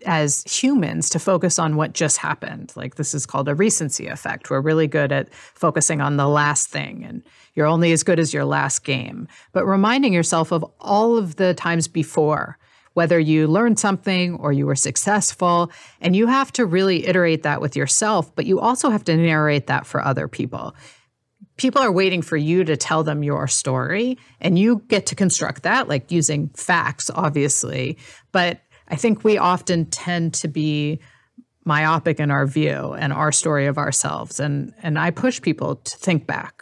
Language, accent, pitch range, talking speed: English, American, 145-180 Hz, 185 wpm